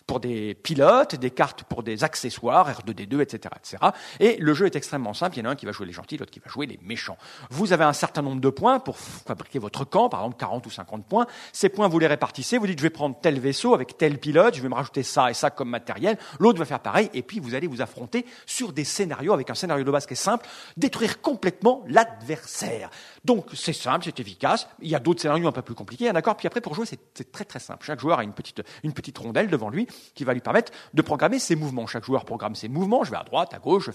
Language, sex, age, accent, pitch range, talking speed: French, male, 40-59, French, 125-205 Hz, 270 wpm